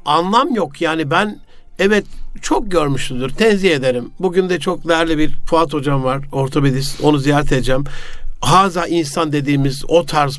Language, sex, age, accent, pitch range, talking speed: Turkish, male, 60-79, native, 145-190 Hz, 150 wpm